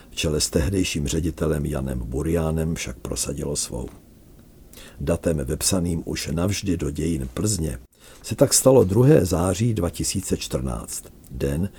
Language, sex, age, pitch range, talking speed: Czech, male, 60-79, 80-95 Hz, 115 wpm